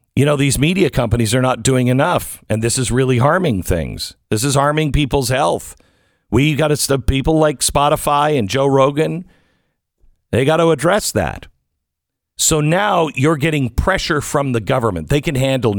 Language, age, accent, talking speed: English, 50-69, American, 170 wpm